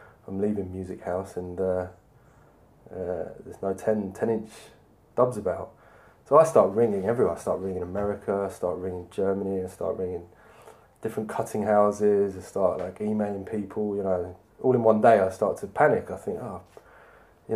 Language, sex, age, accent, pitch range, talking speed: English, male, 20-39, British, 95-115 Hz, 180 wpm